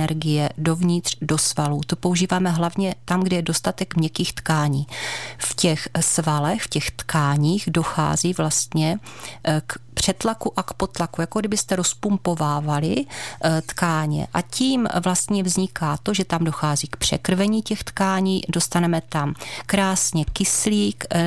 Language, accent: Czech, native